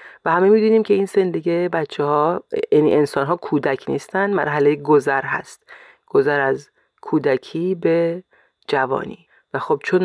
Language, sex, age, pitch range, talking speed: Persian, female, 30-49, 155-215 Hz, 145 wpm